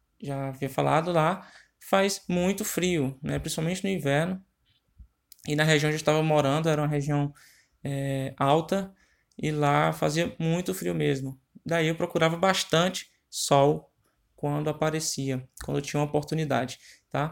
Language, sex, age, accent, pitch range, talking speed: Portuguese, male, 20-39, Brazilian, 150-185 Hz, 135 wpm